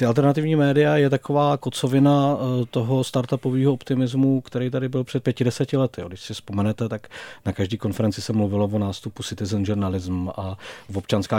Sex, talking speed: male, 160 wpm